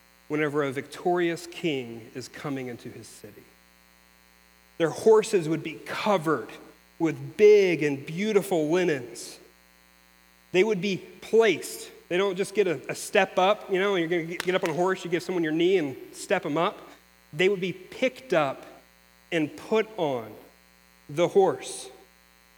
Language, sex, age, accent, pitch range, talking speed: English, male, 40-59, American, 135-200 Hz, 160 wpm